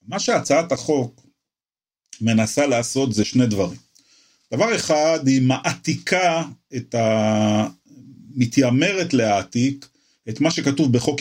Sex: male